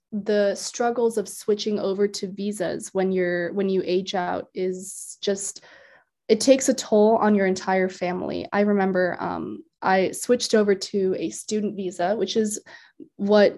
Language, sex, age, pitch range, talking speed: English, female, 20-39, 190-225 Hz, 160 wpm